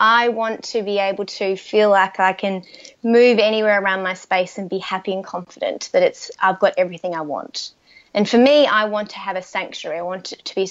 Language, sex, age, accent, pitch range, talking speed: English, female, 20-39, Australian, 195-240 Hz, 235 wpm